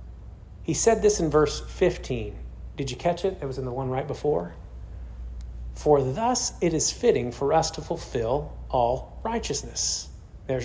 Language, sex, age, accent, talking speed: English, male, 40-59, American, 165 wpm